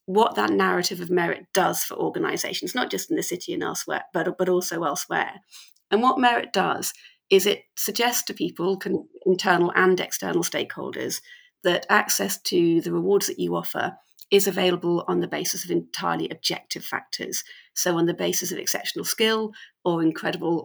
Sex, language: female, English